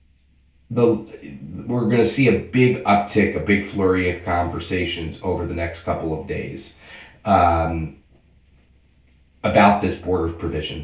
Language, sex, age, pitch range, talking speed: English, male, 30-49, 85-100 Hz, 125 wpm